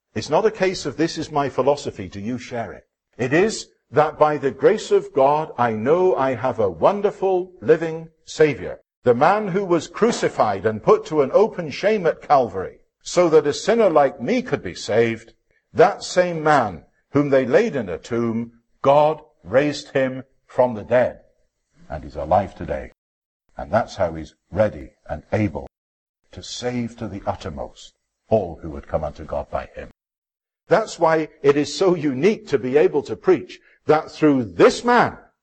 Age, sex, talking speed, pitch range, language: 50-69, male, 180 wpm, 120-180 Hz, English